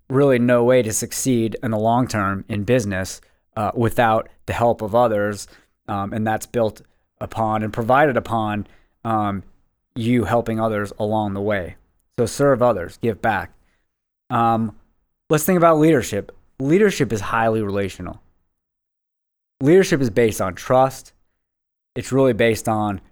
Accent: American